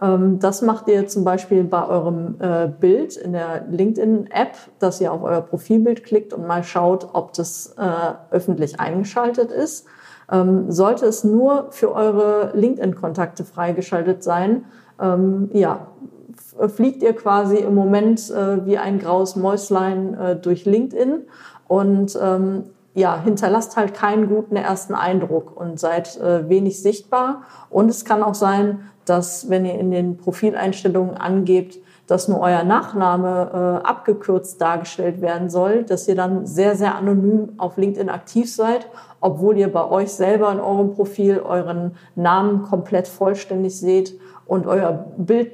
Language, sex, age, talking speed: German, female, 40-59, 135 wpm